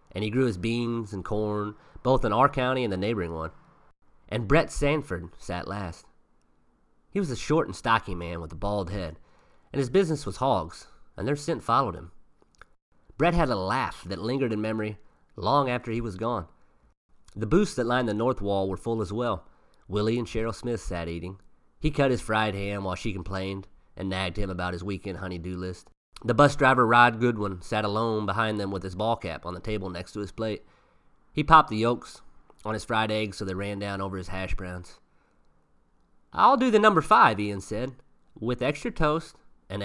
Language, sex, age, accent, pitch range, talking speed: English, male, 30-49, American, 95-125 Hz, 200 wpm